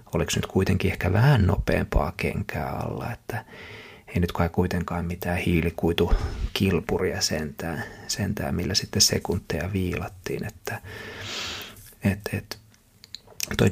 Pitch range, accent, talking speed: 85-105 Hz, native, 100 wpm